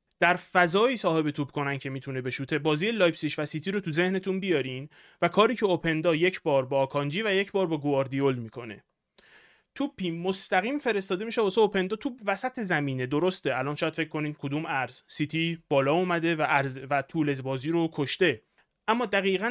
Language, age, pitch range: Persian, 30-49, 150-200 Hz